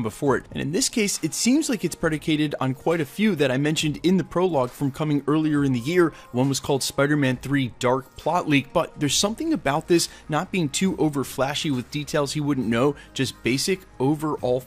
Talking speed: 220 wpm